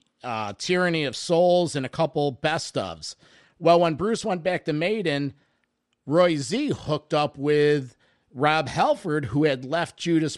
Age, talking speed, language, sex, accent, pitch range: 50-69, 155 wpm, English, male, American, 135-170 Hz